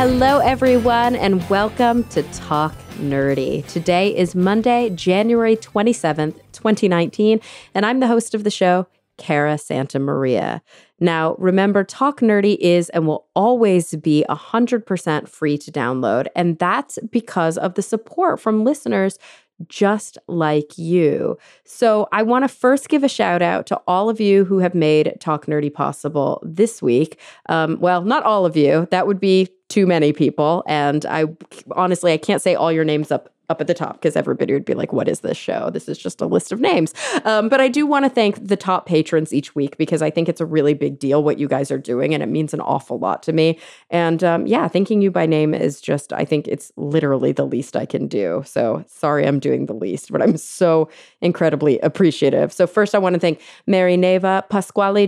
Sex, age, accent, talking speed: female, 30-49, American, 200 wpm